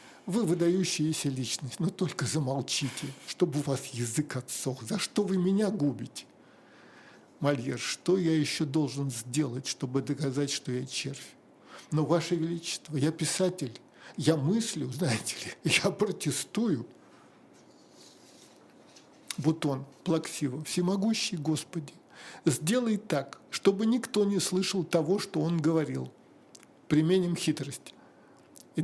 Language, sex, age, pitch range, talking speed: Russian, male, 50-69, 145-210 Hz, 115 wpm